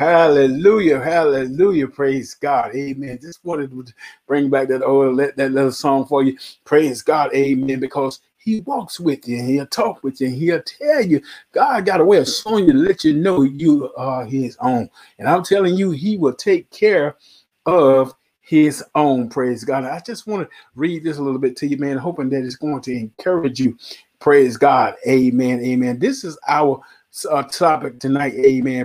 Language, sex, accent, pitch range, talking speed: English, male, American, 130-165 Hz, 190 wpm